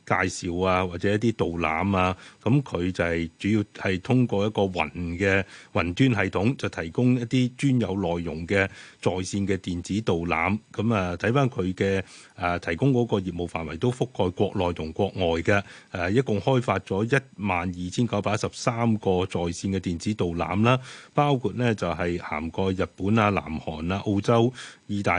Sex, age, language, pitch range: male, 30-49, Chinese, 90-115 Hz